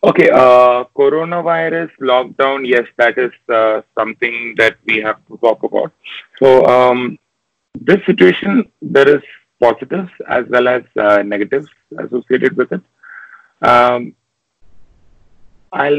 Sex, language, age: male, English, 30-49